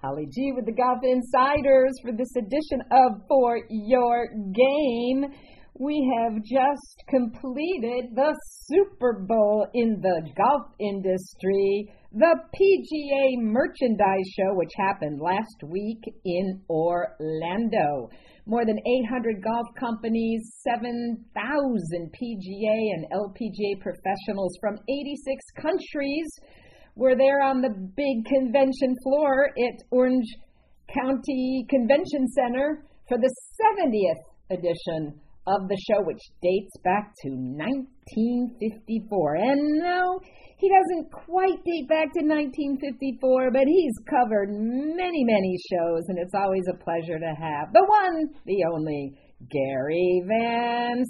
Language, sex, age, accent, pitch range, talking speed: English, female, 50-69, American, 195-275 Hz, 115 wpm